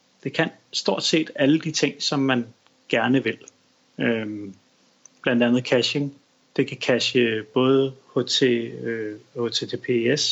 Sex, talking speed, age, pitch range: male, 110 wpm, 30-49, 115-135 Hz